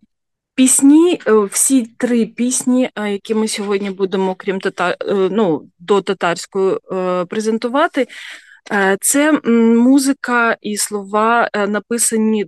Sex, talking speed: female, 90 wpm